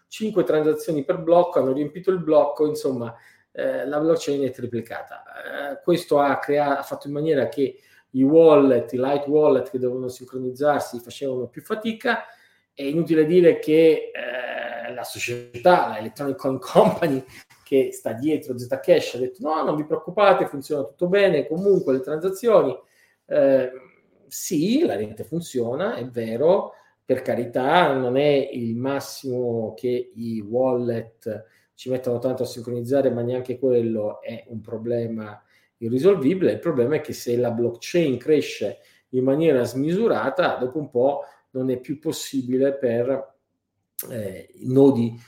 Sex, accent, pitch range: male, native, 120-155 Hz